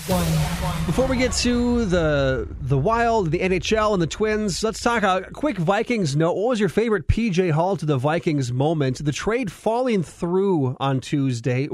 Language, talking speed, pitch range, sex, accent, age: English, 175 wpm, 140-185 Hz, male, American, 30-49